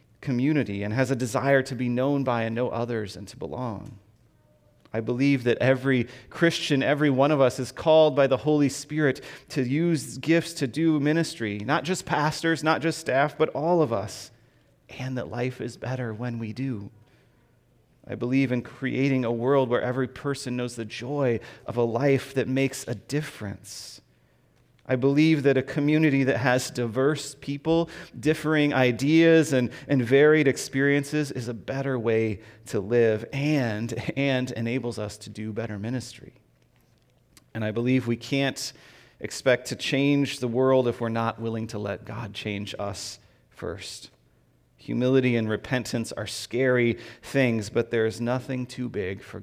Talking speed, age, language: 165 wpm, 30-49, English